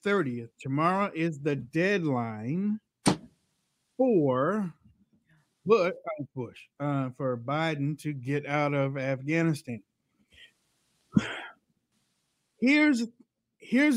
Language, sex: English, male